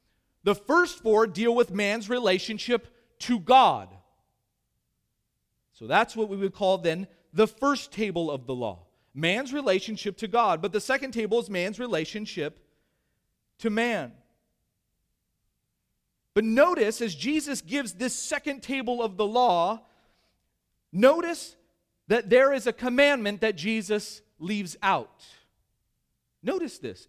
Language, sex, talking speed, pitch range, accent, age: English, male, 130 wpm, 175-240 Hz, American, 40-59